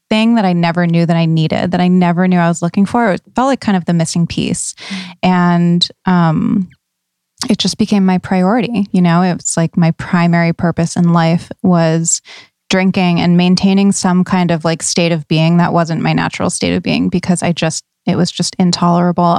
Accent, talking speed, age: American, 205 wpm, 20-39